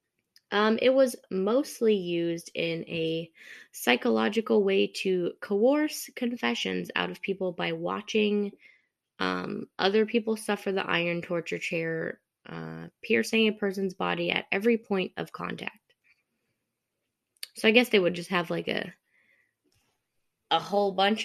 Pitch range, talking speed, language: 175-230 Hz, 135 wpm, English